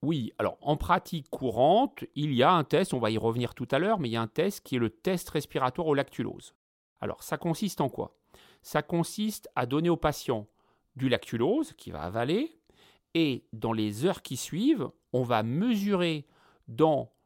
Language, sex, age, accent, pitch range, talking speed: French, male, 40-59, French, 125-175 Hz, 195 wpm